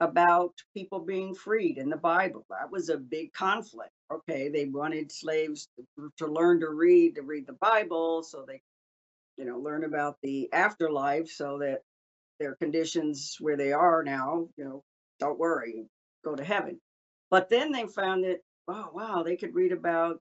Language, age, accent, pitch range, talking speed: English, 60-79, American, 145-175 Hz, 175 wpm